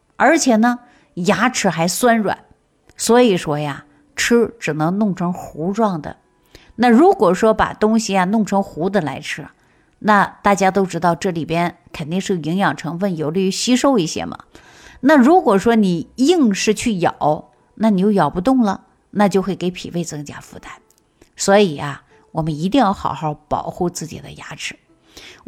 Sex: female